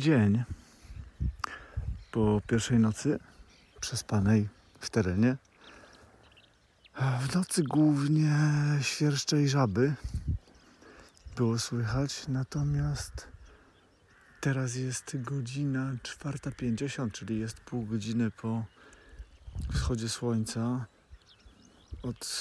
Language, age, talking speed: Polish, 40-59, 80 wpm